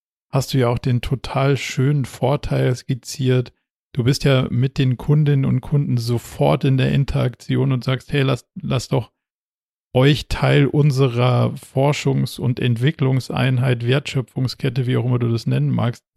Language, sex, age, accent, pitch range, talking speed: German, male, 40-59, German, 120-140 Hz, 150 wpm